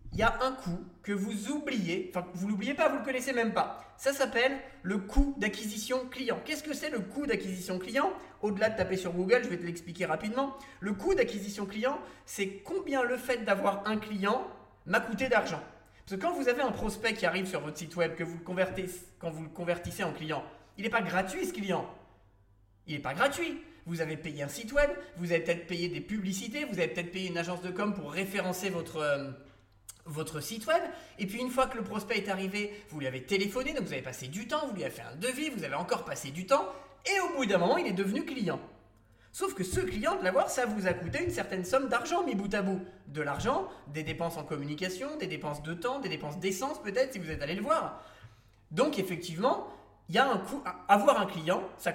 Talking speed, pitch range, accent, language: 235 wpm, 170-255 Hz, French, French